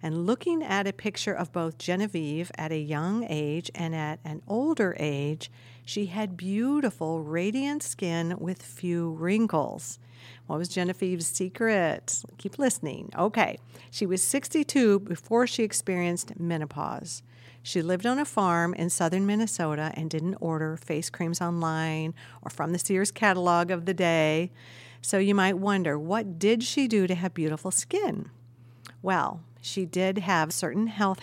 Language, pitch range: English, 155-200 Hz